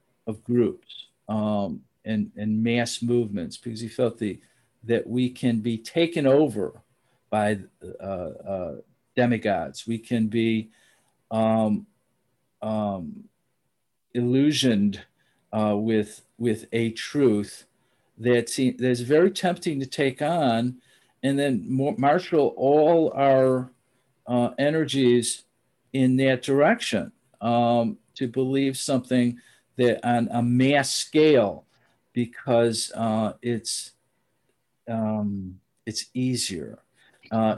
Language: English